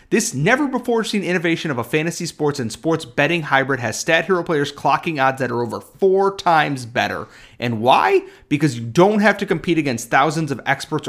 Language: English